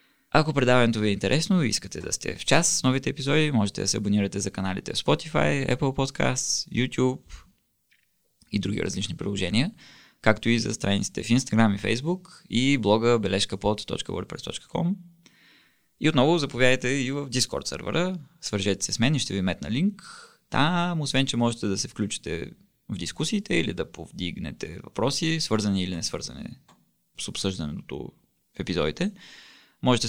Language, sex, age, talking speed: Bulgarian, male, 20-39, 155 wpm